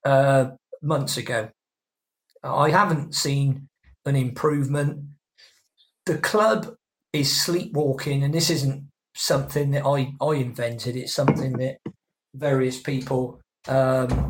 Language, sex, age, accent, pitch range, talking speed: English, male, 50-69, British, 135-160 Hz, 110 wpm